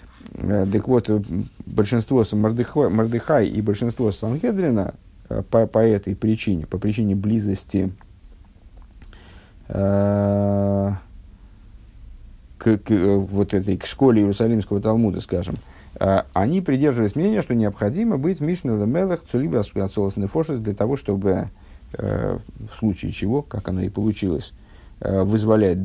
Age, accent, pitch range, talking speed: 50-69, native, 95-115 Hz, 110 wpm